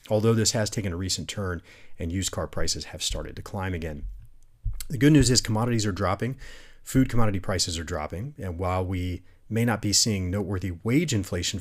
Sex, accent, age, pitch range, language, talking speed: male, American, 40-59, 90-115 Hz, English, 195 wpm